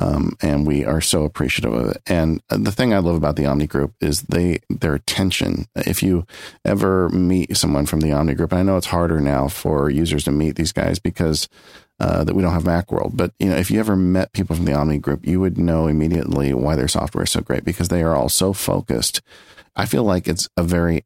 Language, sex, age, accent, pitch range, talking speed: English, male, 40-59, American, 70-90 Hz, 235 wpm